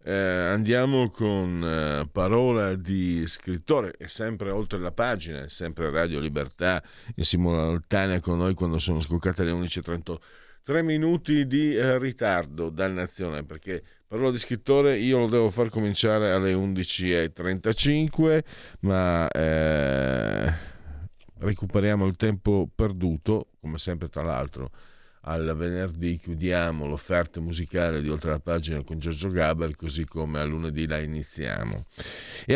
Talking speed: 135 wpm